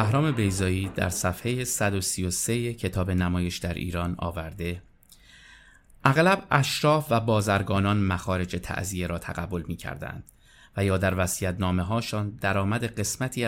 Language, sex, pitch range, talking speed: Persian, male, 95-115 Hz, 120 wpm